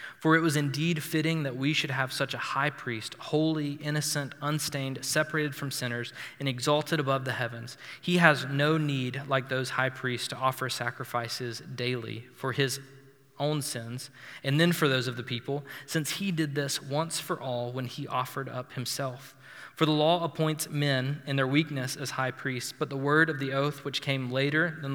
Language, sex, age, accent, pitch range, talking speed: English, male, 20-39, American, 135-160 Hz, 190 wpm